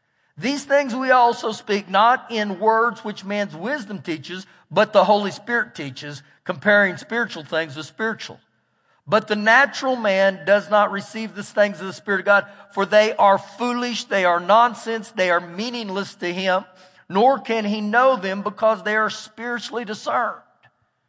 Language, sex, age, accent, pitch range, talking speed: English, male, 50-69, American, 155-225 Hz, 165 wpm